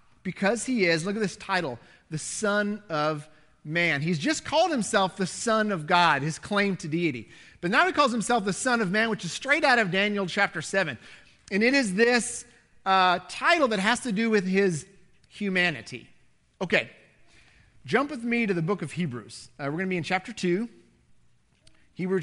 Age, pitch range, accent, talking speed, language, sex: 40-59, 140-205 Hz, American, 190 wpm, English, male